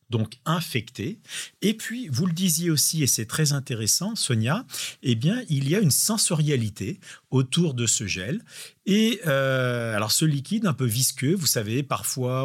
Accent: French